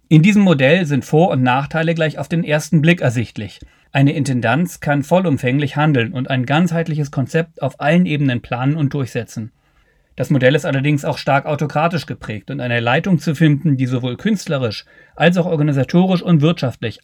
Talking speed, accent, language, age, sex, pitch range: 175 wpm, German, German, 40-59, male, 130-160 Hz